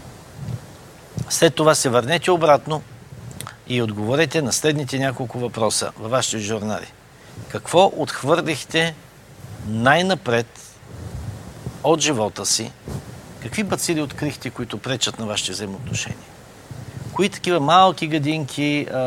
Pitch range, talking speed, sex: 115-150 Hz, 105 wpm, male